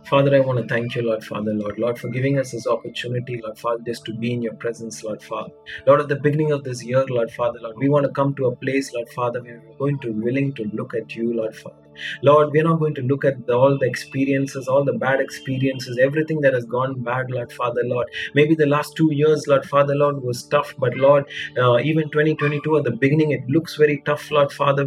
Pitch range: 130-155 Hz